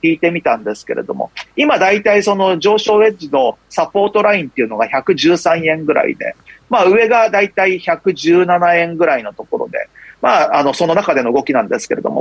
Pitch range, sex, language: 165-260 Hz, male, Japanese